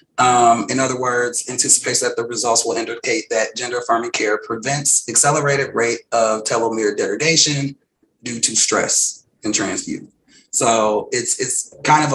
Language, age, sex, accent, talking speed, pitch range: English, 30-49, male, American, 145 wpm, 115-145 Hz